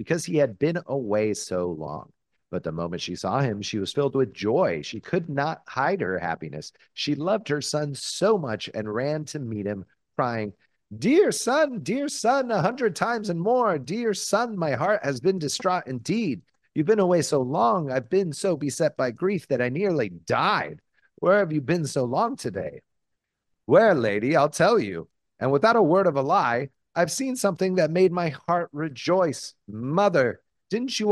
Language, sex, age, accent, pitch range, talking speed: English, male, 40-59, American, 130-190 Hz, 190 wpm